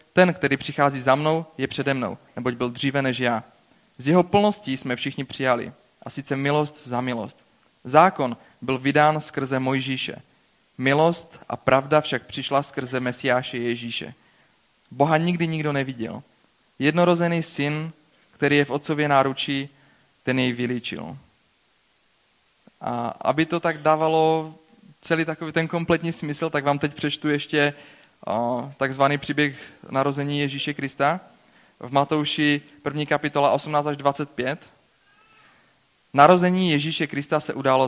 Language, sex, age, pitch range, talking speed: Czech, male, 30-49, 135-155 Hz, 130 wpm